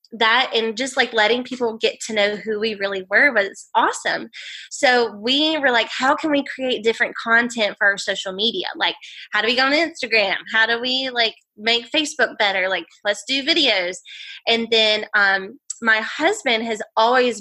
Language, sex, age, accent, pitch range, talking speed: English, female, 20-39, American, 210-280 Hz, 185 wpm